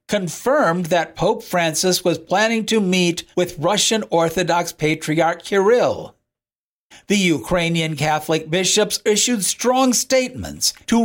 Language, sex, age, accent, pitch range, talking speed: English, male, 60-79, American, 165-205 Hz, 115 wpm